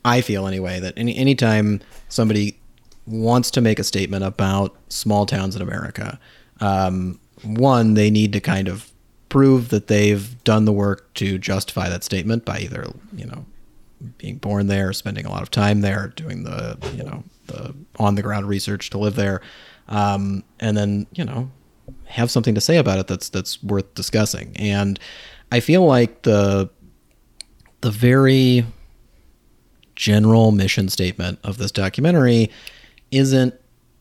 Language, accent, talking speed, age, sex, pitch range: English, American, 155 wpm, 30-49, male, 100-115 Hz